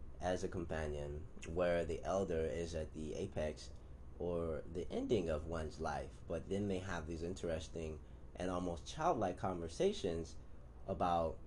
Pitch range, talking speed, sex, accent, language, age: 75-105 Hz, 140 wpm, male, American, English, 30-49